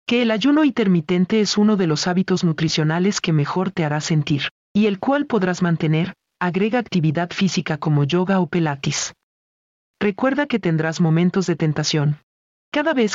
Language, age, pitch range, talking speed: Spanish, 40-59, 155-210 Hz, 160 wpm